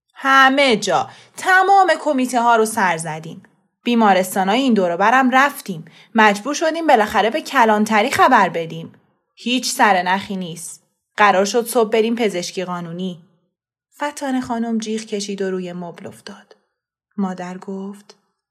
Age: 20-39